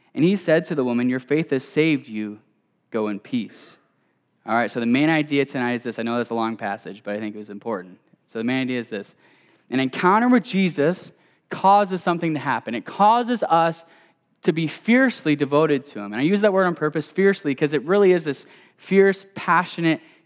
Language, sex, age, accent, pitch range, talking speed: English, male, 10-29, American, 130-180 Hz, 215 wpm